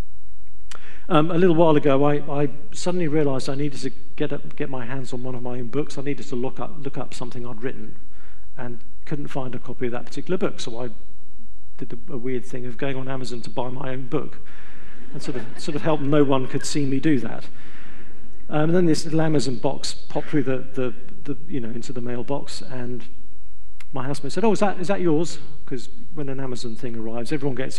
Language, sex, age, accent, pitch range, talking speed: English, male, 50-69, British, 115-155 Hz, 230 wpm